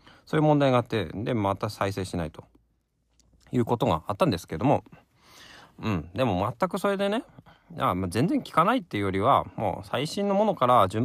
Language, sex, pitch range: Japanese, male, 90-130 Hz